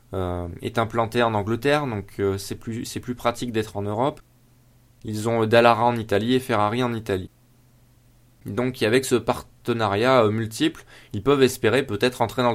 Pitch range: 115-135 Hz